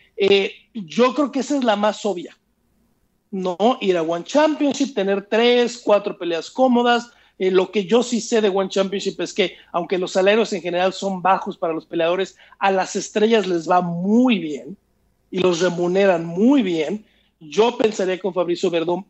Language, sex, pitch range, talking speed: Spanish, male, 185-235 Hz, 180 wpm